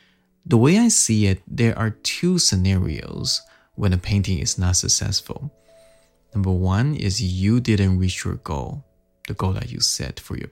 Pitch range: 95-115 Hz